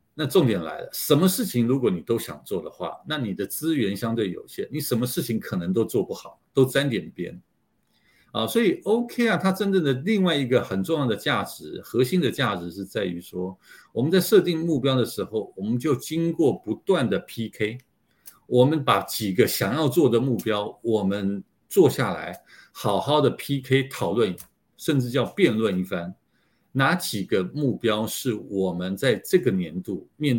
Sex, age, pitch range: male, 50-69, 100-160 Hz